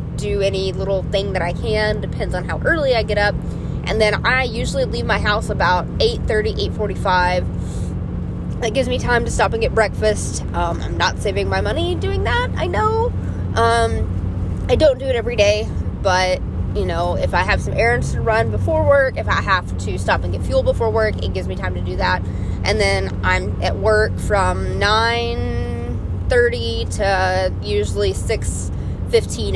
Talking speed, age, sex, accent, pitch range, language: 185 wpm, 20-39, female, American, 90-100 Hz, English